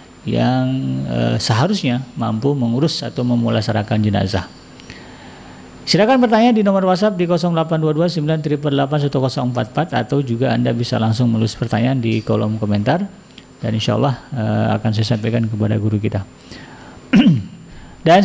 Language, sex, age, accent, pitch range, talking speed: Indonesian, male, 50-69, native, 115-150 Hz, 120 wpm